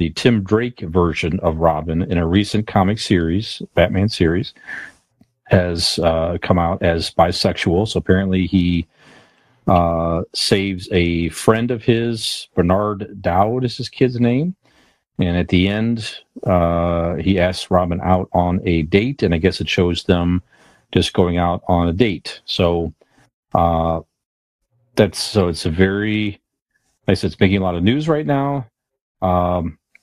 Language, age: English, 40-59